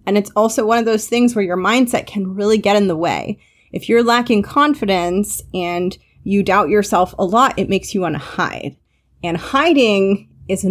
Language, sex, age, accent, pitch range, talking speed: English, female, 30-49, American, 190-245 Hz, 195 wpm